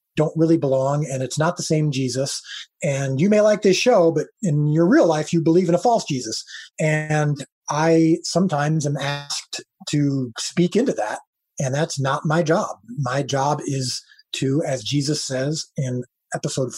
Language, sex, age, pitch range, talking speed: English, male, 30-49, 135-165 Hz, 175 wpm